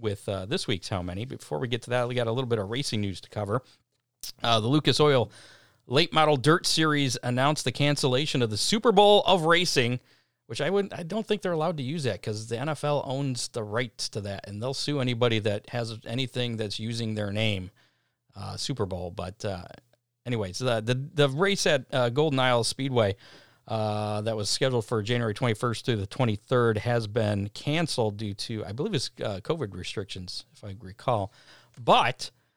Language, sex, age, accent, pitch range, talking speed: English, male, 40-59, American, 110-140 Hz, 200 wpm